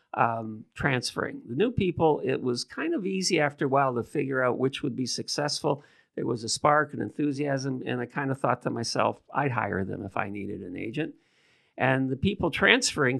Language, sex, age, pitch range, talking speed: English, male, 50-69, 125-150 Hz, 205 wpm